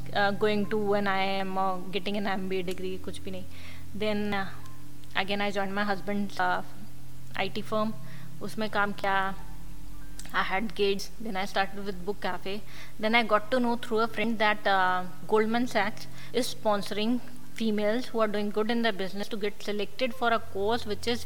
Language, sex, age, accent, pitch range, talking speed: Hindi, female, 20-39, native, 190-220 Hz, 170 wpm